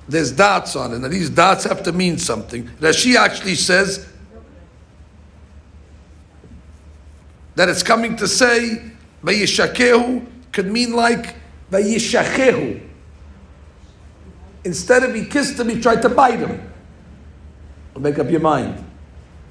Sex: male